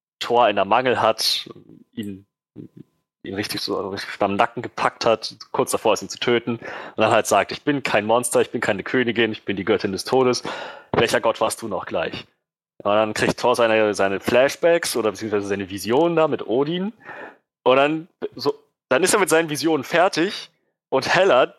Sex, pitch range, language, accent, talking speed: male, 110-160 Hz, German, German, 195 wpm